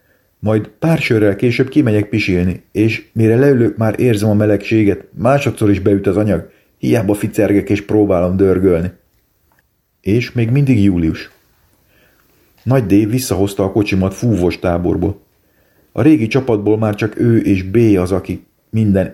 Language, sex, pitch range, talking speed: Hungarian, male, 95-115 Hz, 140 wpm